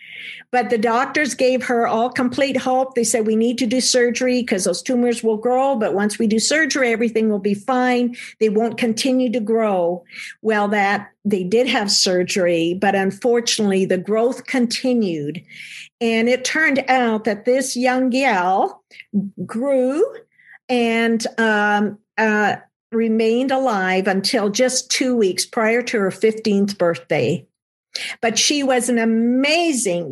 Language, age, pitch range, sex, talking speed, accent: English, 50-69, 220-260 Hz, female, 145 wpm, American